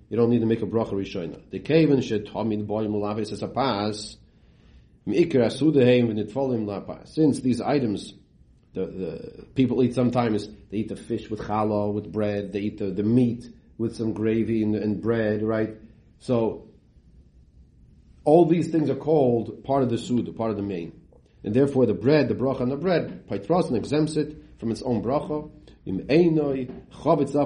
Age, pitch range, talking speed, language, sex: 40-59, 105-140 Hz, 175 wpm, English, male